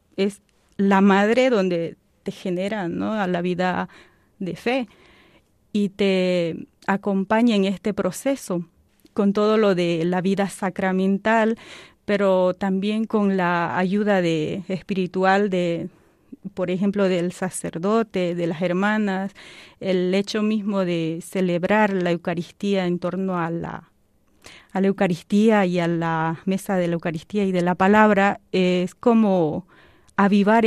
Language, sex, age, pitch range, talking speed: Spanish, female, 30-49, 180-210 Hz, 135 wpm